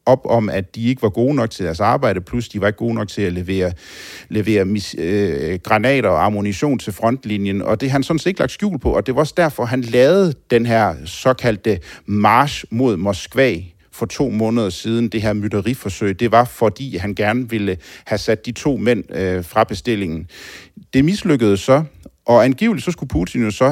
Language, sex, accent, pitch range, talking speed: Danish, male, native, 100-130 Hz, 205 wpm